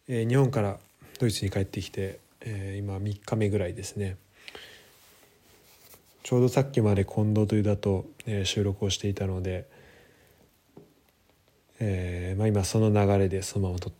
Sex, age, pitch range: male, 20-39, 95-115 Hz